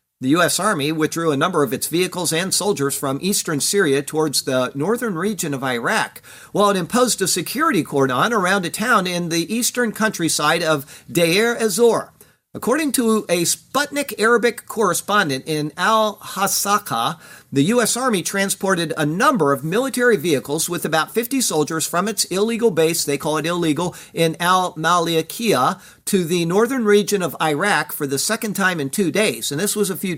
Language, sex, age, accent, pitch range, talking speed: English, male, 50-69, American, 155-210 Hz, 170 wpm